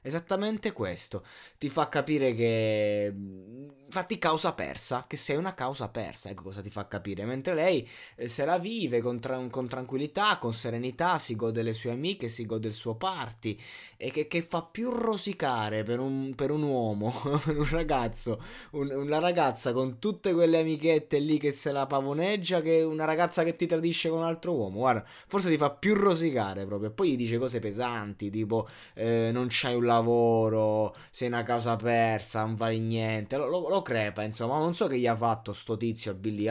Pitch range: 110-150 Hz